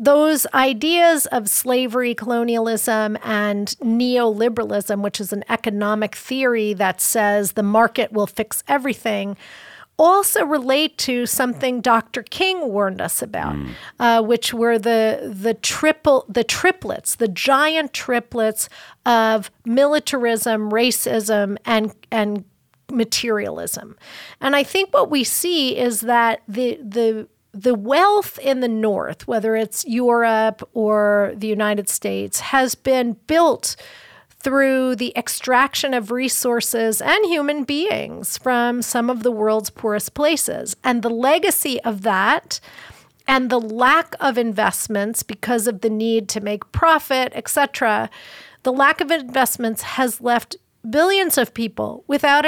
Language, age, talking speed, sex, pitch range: English, 40-59, 130 wpm, female, 220-265 Hz